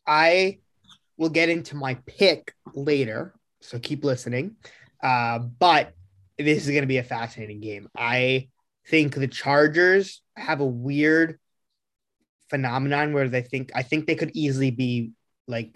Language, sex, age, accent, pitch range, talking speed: English, male, 20-39, American, 125-150 Hz, 145 wpm